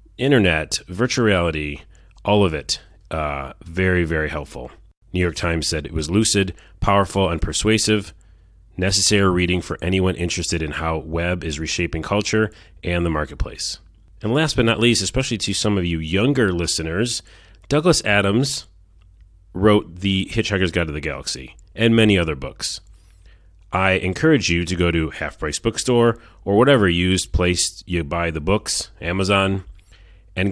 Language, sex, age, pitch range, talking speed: English, male, 30-49, 85-100 Hz, 150 wpm